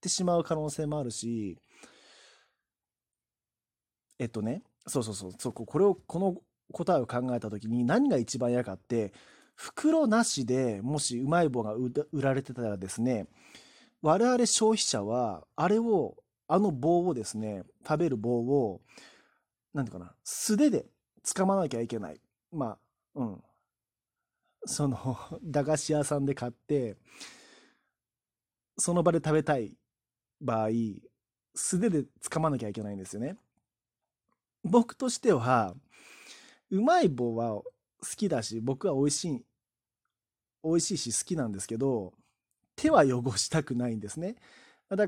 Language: Japanese